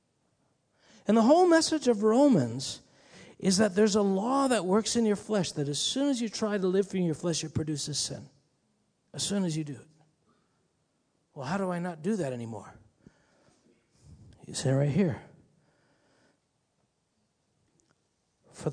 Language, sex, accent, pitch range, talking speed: English, male, American, 145-220 Hz, 165 wpm